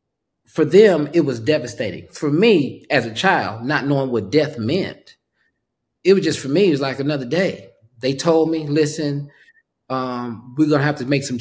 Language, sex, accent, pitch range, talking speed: English, male, American, 145-215 Hz, 195 wpm